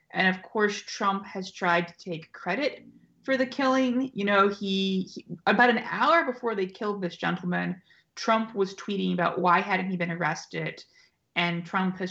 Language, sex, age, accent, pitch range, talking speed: English, female, 20-39, American, 170-205 Hz, 180 wpm